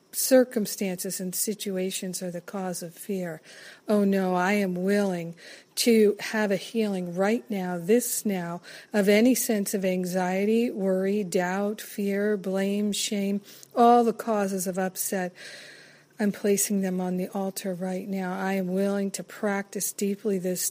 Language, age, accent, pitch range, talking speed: English, 50-69, American, 185-210 Hz, 150 wpm